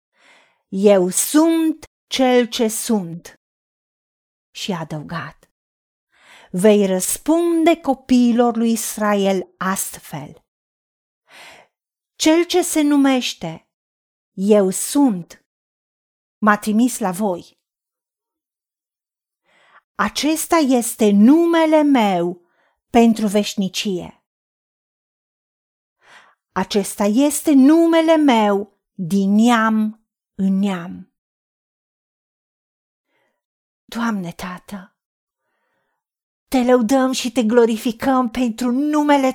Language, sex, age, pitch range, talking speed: Romanian, female, 40-59, 205-275 Hz, 70 wpm